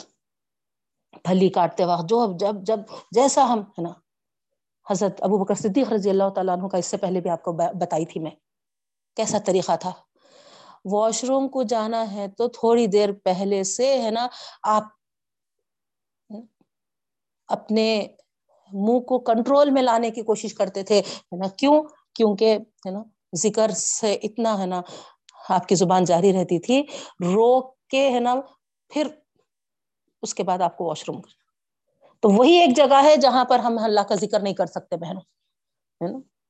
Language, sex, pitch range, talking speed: Urdu, female, 190-240 Hz, 160 wpm